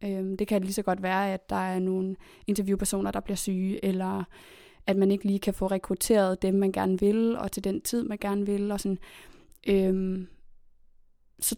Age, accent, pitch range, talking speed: 20-39, native, 190-215 Hz, 190 wpm